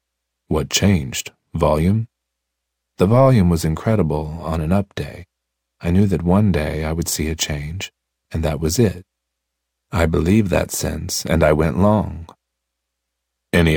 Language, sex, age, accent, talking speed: English, male, 40-59, American, 150 wpm